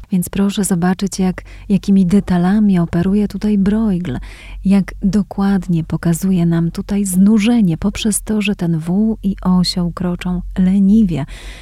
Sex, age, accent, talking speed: female, 30-49, native, 120 wpm